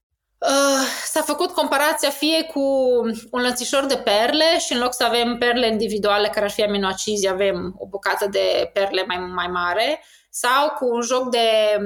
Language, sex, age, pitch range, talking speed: Romanian, female, 20-39, 200-265 Hz, 170 wpm